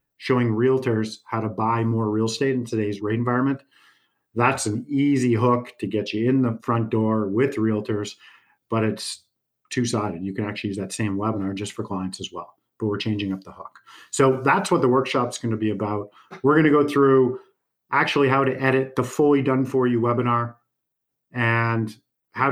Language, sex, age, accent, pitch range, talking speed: English, male, 50-69, American, 110-135 Hz, 190 wpm